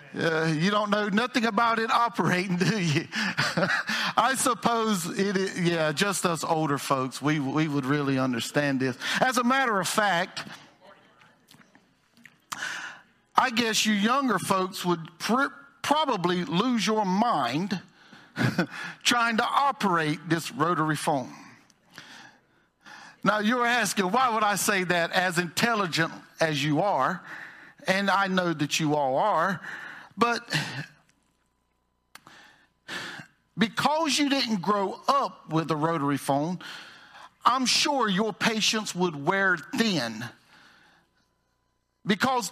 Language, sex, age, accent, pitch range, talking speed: English, male, 50-69, American, 165-235 Hz, 115 wpm